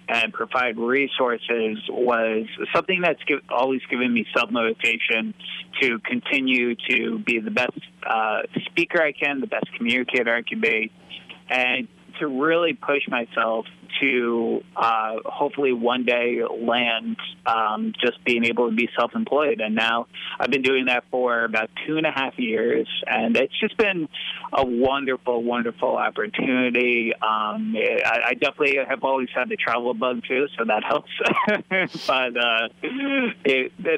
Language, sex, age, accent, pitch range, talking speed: English, male, 30-49, American, 115-150 Hz, 145 wpm